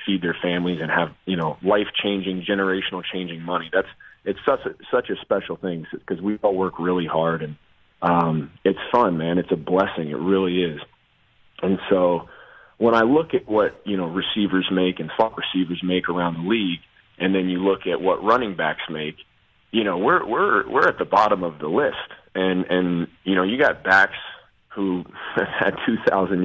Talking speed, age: 190 wpm, 30-49